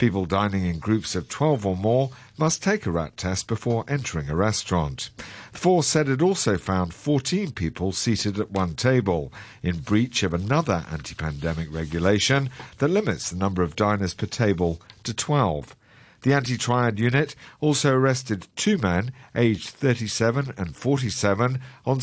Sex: male